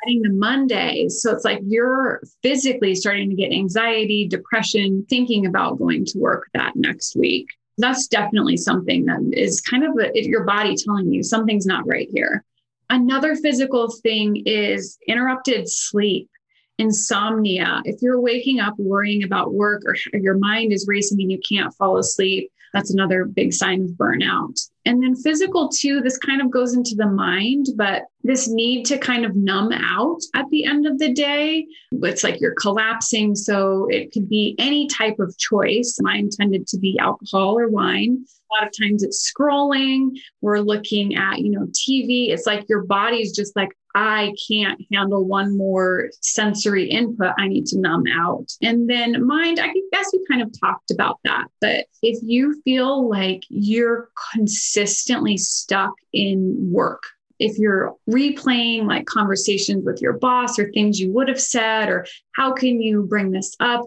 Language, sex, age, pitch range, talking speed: English, female, 30-49, 205-255 Hz, 170 wpm